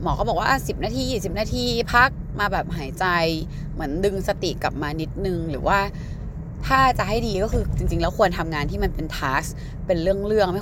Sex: female